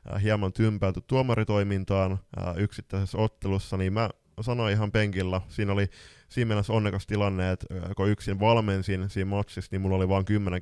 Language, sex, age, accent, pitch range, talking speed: Finnish, male, 20-39, native, 95-115 Hz, 155 wpm